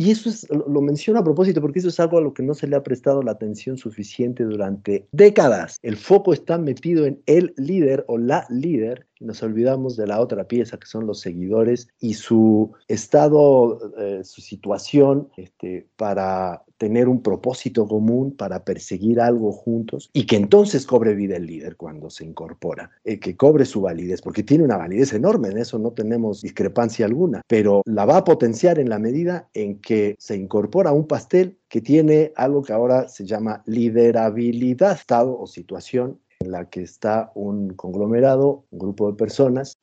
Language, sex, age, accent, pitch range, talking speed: Spanish, male, 50-69, Mexican, 100-135 Hz, 180 wpm